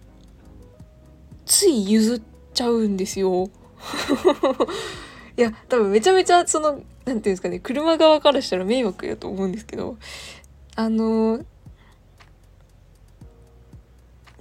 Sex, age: female, 20-39